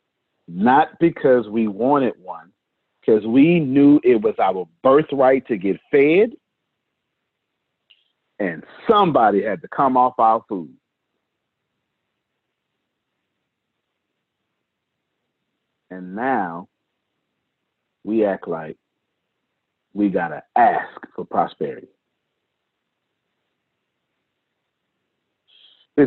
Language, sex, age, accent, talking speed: English, male, 50-69, American, 80 wpm